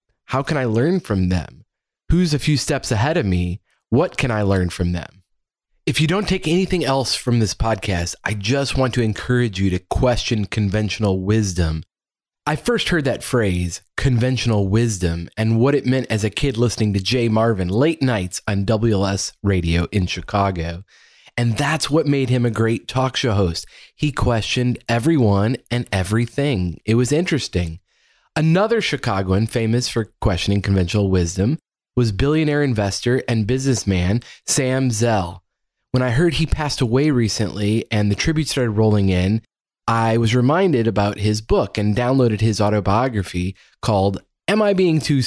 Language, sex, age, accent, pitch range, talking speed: English, male, 30-49, American, 100-135 Hz, 165 wpm